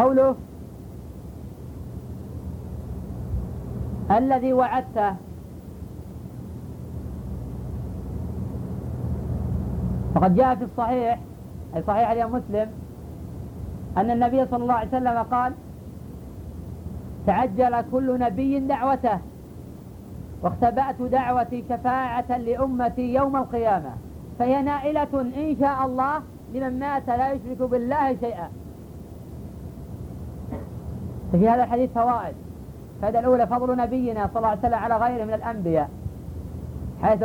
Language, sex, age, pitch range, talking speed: Arabic, female, 50-69, 225-260 Hz, 90 wpm